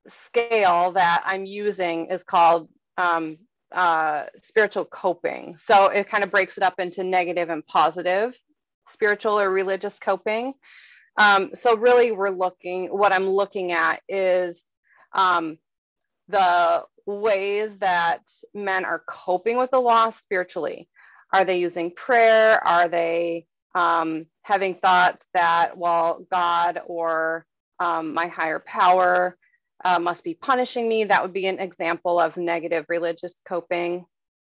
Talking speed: 135 wpm